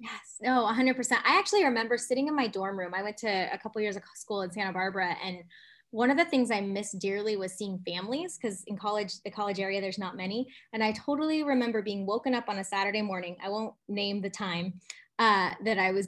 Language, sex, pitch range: English, female, 195-255 Hz